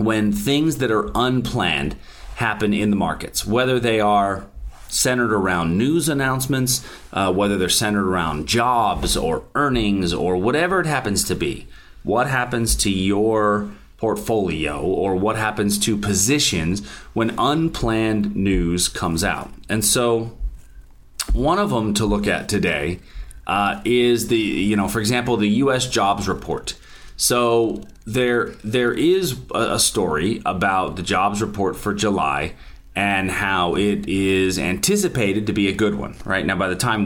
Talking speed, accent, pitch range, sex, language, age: 150 wpm, American, 95-120 Hz, male, English, 30-49